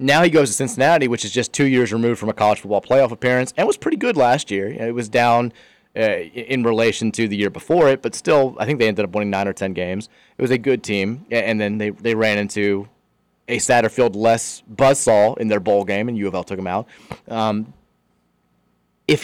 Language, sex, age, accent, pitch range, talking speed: English, male, 30-49, American, 110-140 Hz, 220 wpm